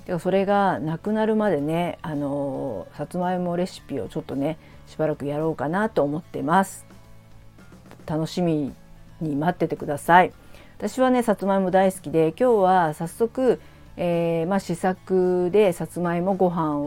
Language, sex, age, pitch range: Japanese, female, 50-69, 145-180 Hz